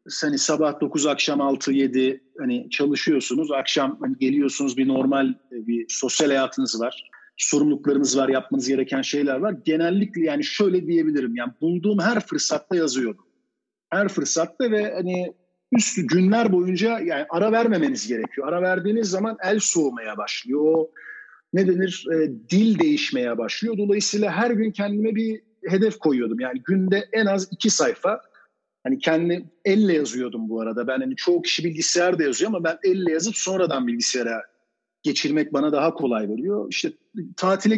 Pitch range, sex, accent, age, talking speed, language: 150-215 Hz, male, native, 50-69, 150 wpm, Turkish